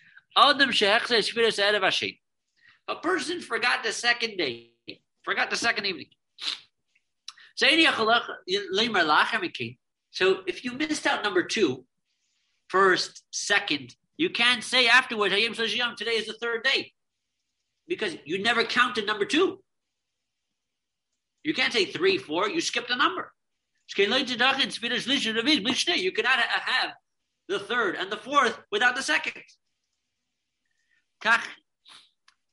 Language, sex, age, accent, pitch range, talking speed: English, male, 50-69, American, 210-335 Hz, 100 wpm